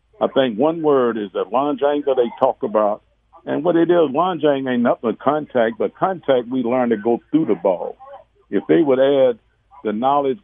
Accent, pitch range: American, 105-135 Hz